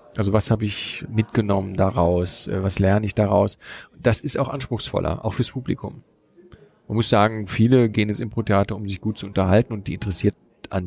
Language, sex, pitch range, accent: German, male, 100-125 Hz, German